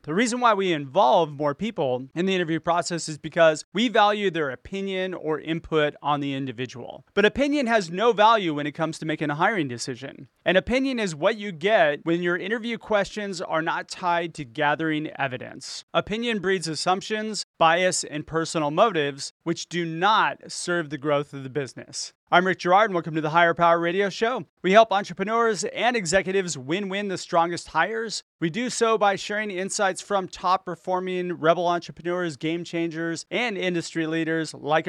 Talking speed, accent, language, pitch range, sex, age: 180 wpm, American, English, 155-200 Hz, male, 30-49